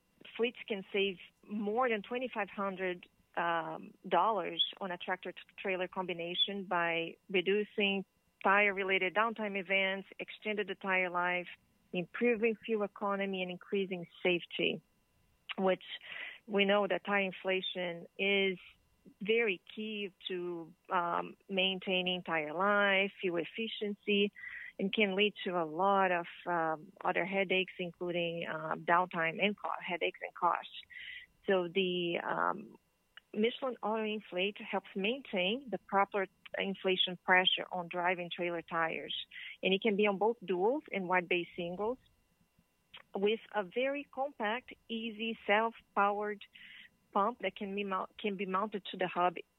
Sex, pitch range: female, 180-210 Hz